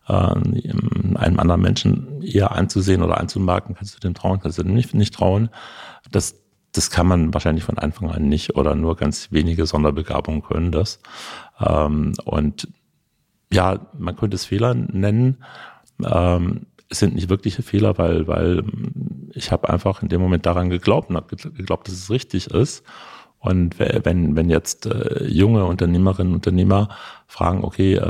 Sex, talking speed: male, 150 wpm